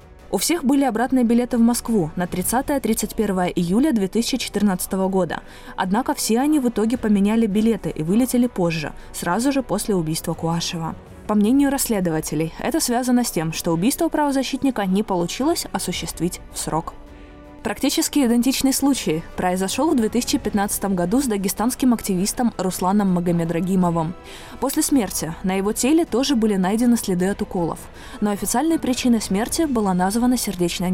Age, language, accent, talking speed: 20-39, Russian, native, 140 wpm